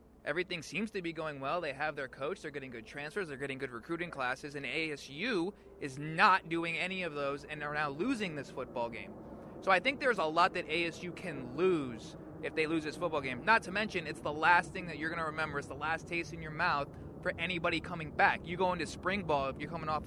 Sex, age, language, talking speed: male, 20-39, English, 245 wpm